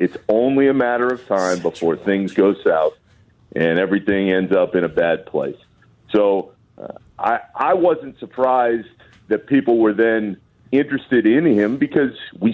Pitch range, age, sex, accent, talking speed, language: 115-170 Hz, 40-59, male, American, 160 wpm, English